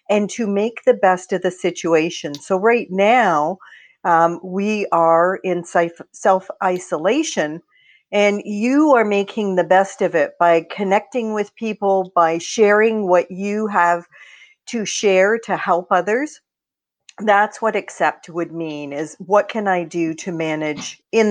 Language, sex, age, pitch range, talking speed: English, female, 50-69, 175-220 Hz, 145 wpm